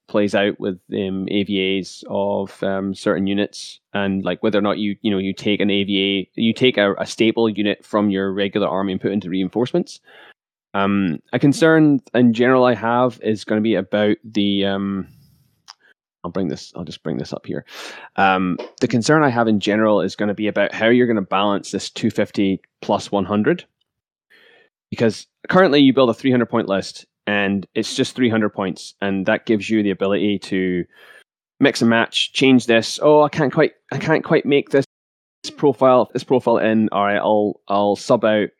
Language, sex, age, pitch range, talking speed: English, male, 20-39, 100-120 Hz, 200 wpm